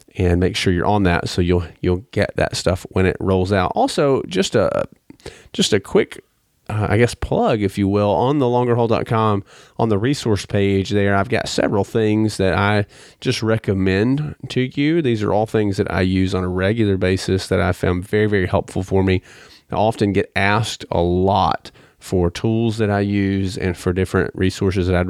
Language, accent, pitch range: English, American, 90-105 Hz